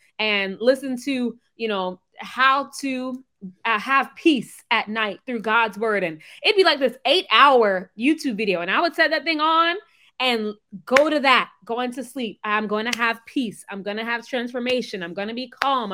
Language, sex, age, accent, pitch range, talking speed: English, female, 20-39, American, 220-310 Hz, 200 wpm